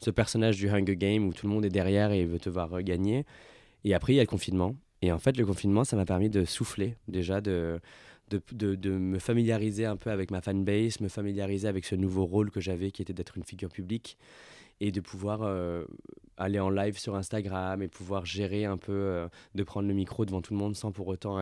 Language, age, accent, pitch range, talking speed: French, 20-39, French, 95-115 Hz, 240 wpm